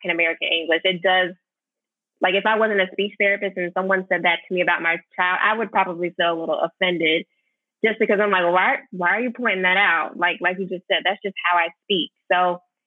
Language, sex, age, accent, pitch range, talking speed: English, female, 20-39, American, 180-215 Hz, 230 wpm